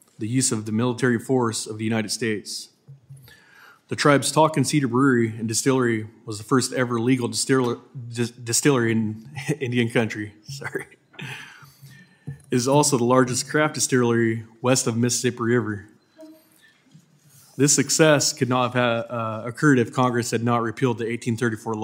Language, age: English, 20-39